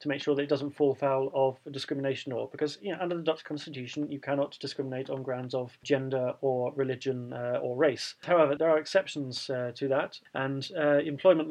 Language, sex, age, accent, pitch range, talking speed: English, male, 30-49, British, 135-155 Hz, 210 wpm